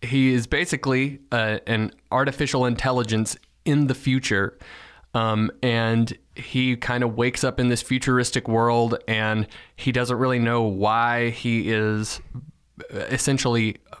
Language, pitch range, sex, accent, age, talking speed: English, 110-130 Hz, male, American, 20-39, 130 wpm